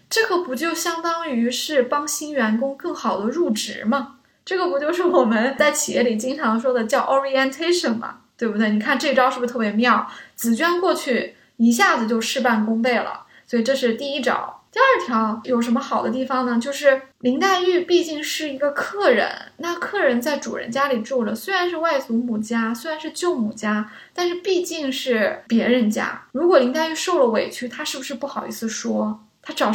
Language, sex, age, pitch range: Chinese, female, 20-39, 240-335 Hz